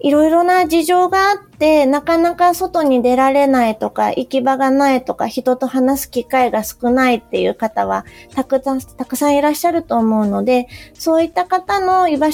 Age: 30-49